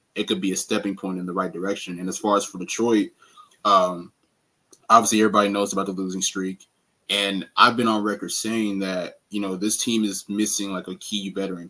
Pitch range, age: 95-105 Hz, 20-39